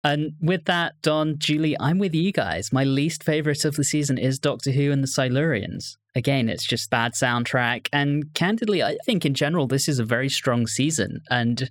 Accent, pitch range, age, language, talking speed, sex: British, 120-145 Hz, 20-39, English, 200 wpm, male